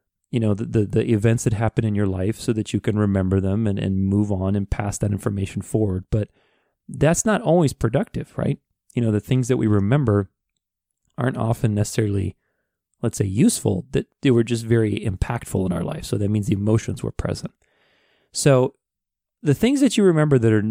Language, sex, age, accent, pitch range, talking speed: English, male, 30-49, American, 100-125 Hz, 200 wpm